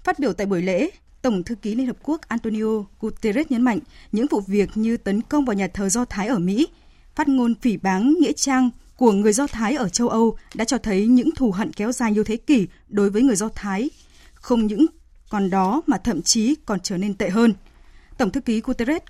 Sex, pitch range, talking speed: female, 210-270 Hz, 230 wpm